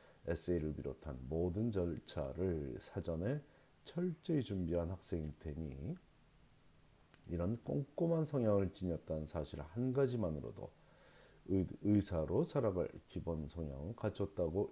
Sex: male